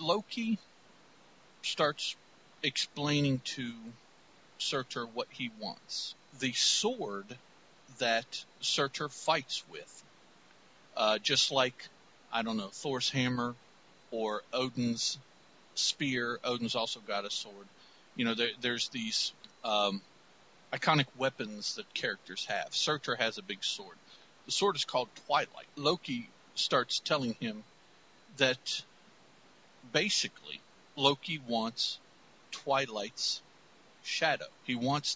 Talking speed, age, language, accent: 105 wpm, 50-69, English, American